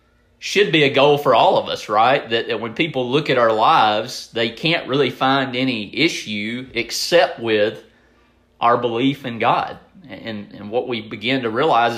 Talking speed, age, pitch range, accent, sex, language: 180 wpm, 30-49, 110-130 Hz, American, male, English